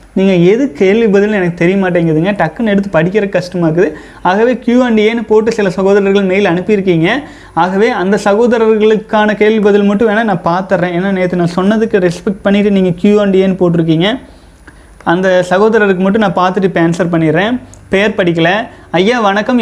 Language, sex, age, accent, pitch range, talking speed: Tamil, male, 30-49, native, 185-215 Hz, 145 wpm